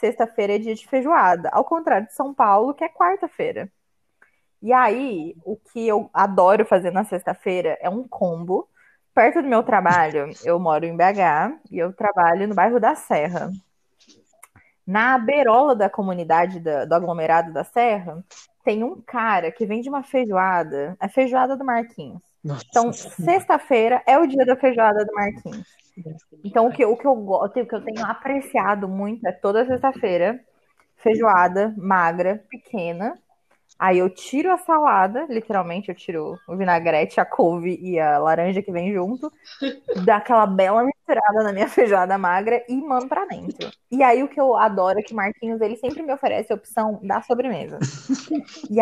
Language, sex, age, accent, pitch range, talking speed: Portuguese, female, 20-39, Brazilian, 185-255 Hz, 170 wpm